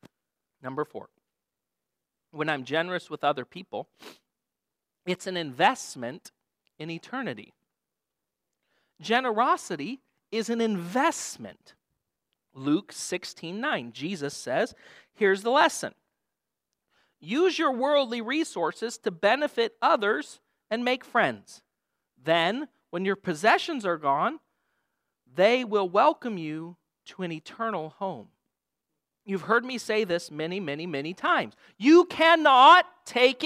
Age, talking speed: 40-59, 110 wpm